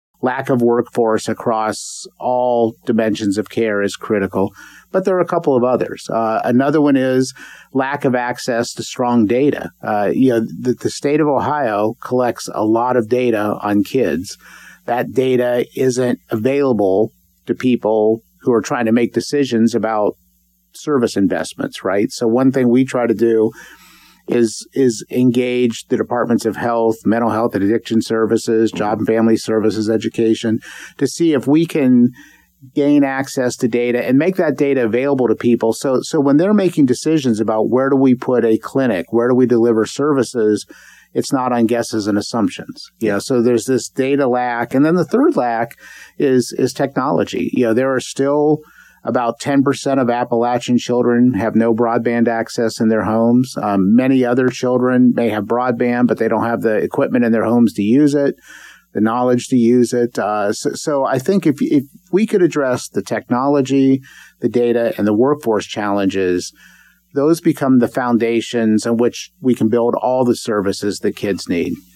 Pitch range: 110-135 Hz